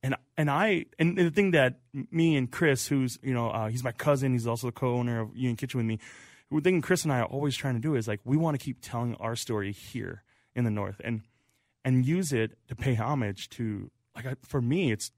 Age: 20-39